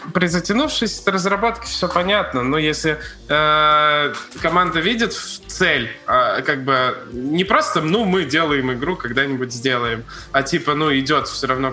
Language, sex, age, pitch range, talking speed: Russian, male, 20-39, 130-165 Hz, 145 wpm